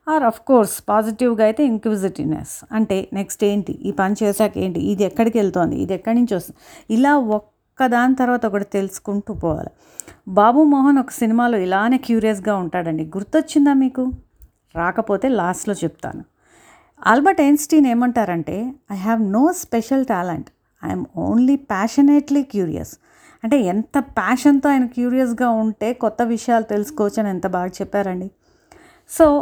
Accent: native